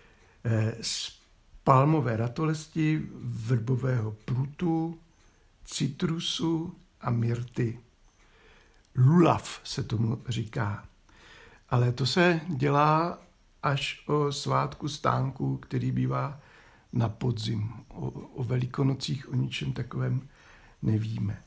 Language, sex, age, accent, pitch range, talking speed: Czech, male, 60-79, native, 115-160 Hz, 85 wpm